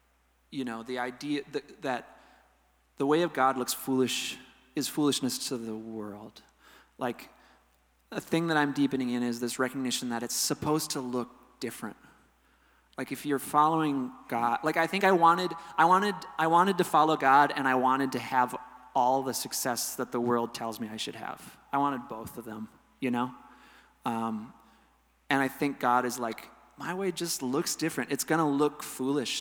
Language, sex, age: English, male, 30-49